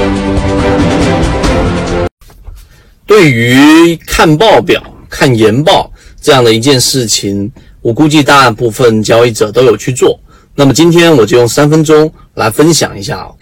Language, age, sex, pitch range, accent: Chinese, 30-49, male, 115-160 Hz, native